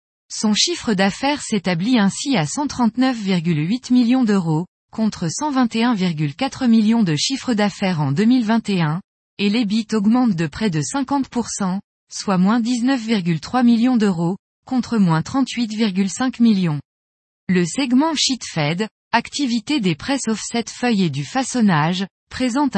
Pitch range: 180-245 Hz